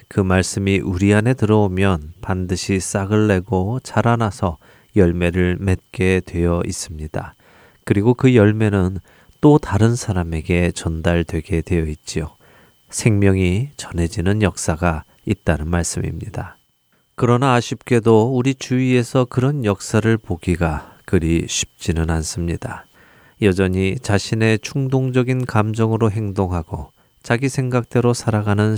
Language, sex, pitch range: Korean, male, 85-115 Hz